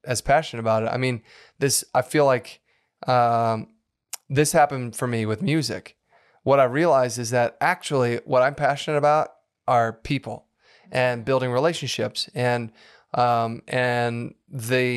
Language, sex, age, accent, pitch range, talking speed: English, male, 30-49, American, 115-140 Hz, 145 wpm